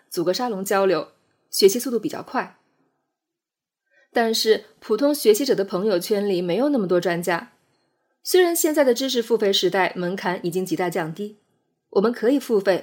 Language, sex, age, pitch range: Chinese, female, 20-39, 190-300 Hz